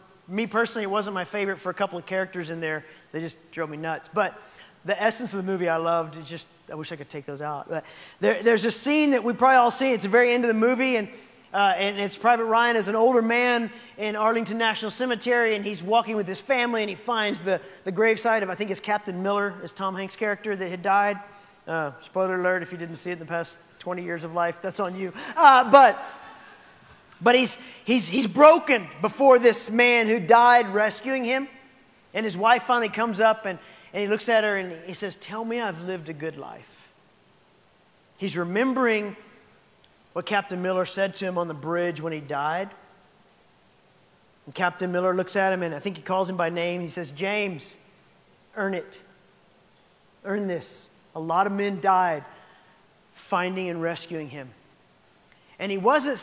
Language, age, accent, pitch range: English, 30-49, American, 180-230 Hz